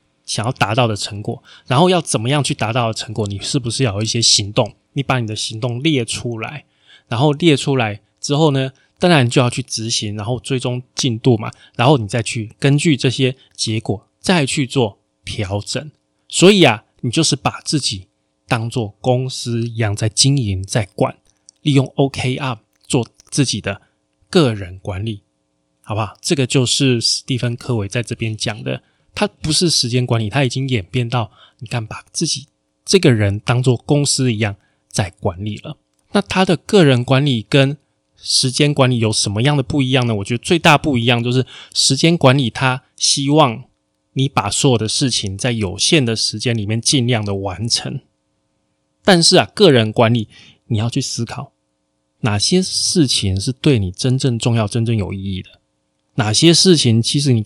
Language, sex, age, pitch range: Chinese, male, 20-39, 105-140 Hz